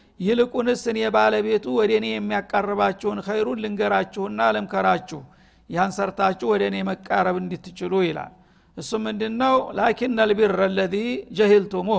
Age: 60-79